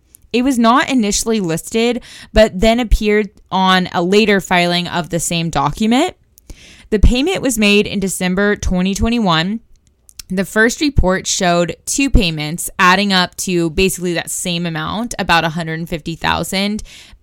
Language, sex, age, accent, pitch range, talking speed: English, female, 20-39, American, 170-215 Hz, 130 wpm